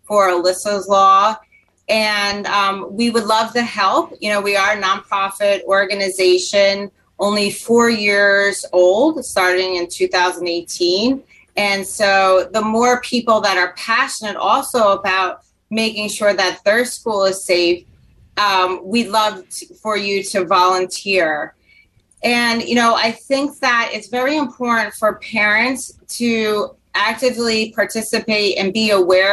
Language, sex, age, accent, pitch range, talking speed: English, female, 30-49, American, 195-225 Hz, 135 wpm